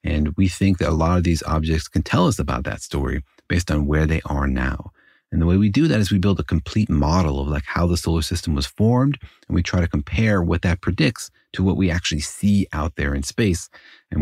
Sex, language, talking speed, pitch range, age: male, English, 250 wpm, 80-95 Hz, 30-49